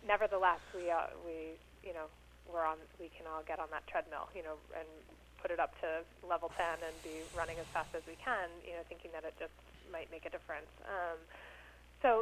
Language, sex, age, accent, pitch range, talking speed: English, female, 20-39, American, 165-190 Hz, 215 wpm